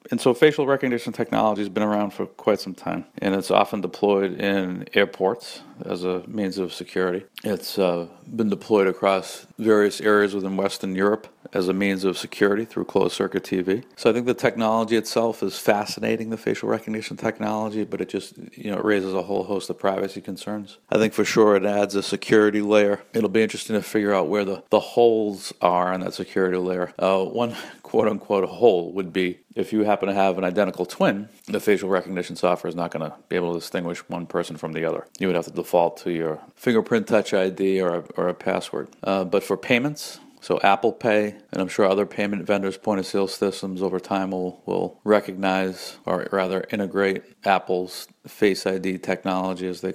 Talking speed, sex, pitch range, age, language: 200 wpm, male, 95-105 Hz, 50-69, English